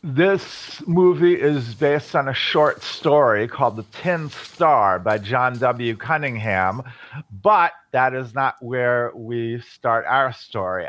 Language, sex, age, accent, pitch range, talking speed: English, male, 50-69, American, 115-140 Hz, 140 wpm